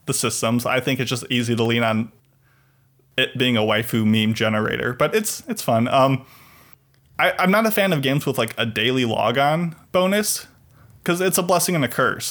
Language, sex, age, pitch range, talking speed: English, male, 20-39, 120-140 Hz, 195 wpm